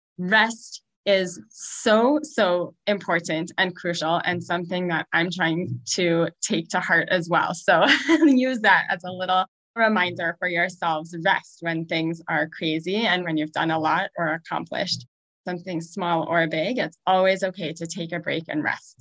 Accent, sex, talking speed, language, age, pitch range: American, female, 165 wpm, English, 20-39, 170-210 Hz